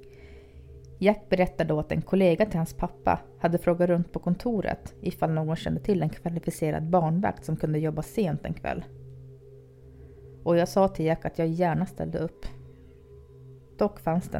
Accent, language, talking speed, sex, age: native, Swedish, 165 wpm, female, 30-49